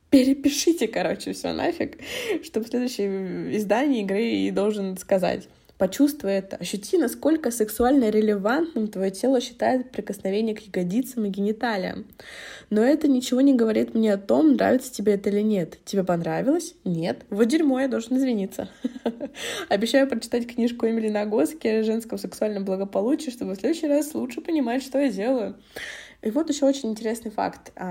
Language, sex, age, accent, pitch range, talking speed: Russian, female, 20-39, native, 185-245 Hz, 155 wpm